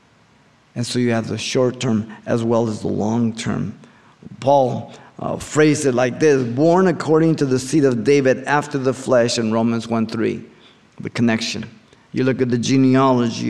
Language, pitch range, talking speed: English, 115-130 Hz, 175 wpm